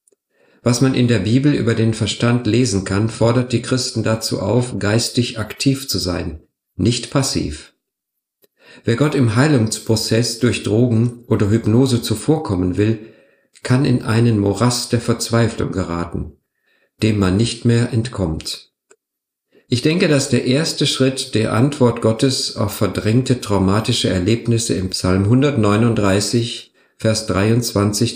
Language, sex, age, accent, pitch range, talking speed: German, male, 50-69, German, 100-125 Hz, 130 wpm